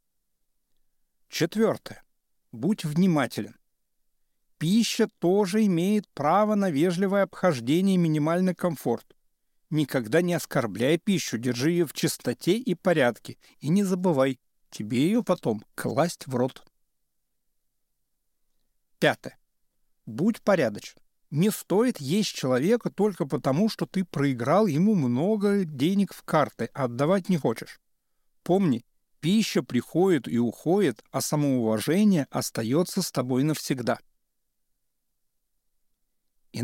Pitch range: 135-195 Hz